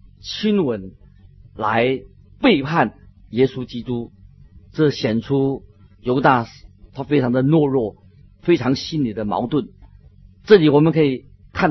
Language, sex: Chinese, male